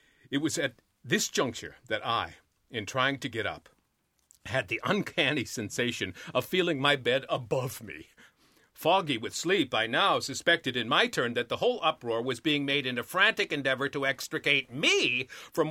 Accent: American